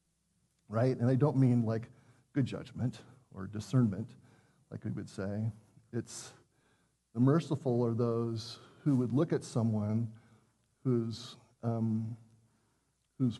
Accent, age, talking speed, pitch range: American, 40-59, 120 wpm, 115-135 Hz